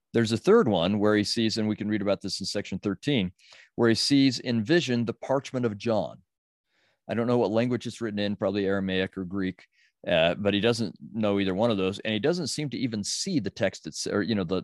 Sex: male